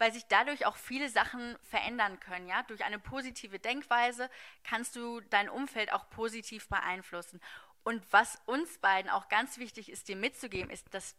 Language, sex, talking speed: German, female, 170 wpm